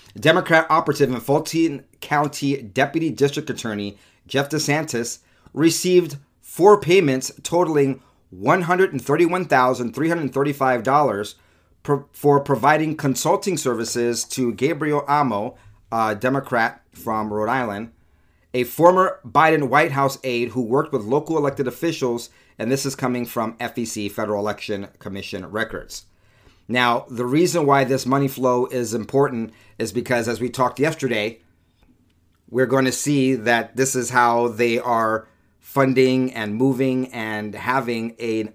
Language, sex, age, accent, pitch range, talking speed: English, male, 40-59, American, 110-140 Hz, 125 wpm